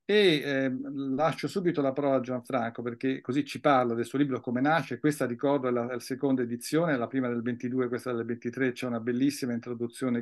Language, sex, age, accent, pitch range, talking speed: Italian, male, 50-69, native, 125-145 Hz, 205 wpm